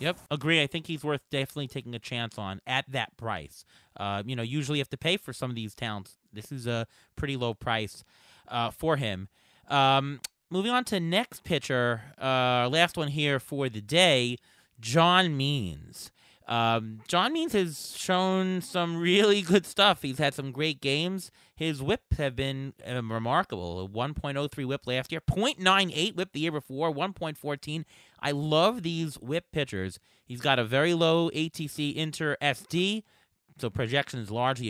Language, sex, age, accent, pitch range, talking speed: English, male, 30-49, American, 120-165 Hz, 170 wpm